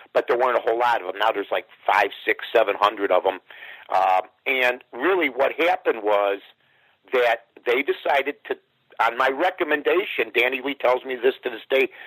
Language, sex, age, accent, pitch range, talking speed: English, male, 50-69, American, 120-175 Hz, 190 wpm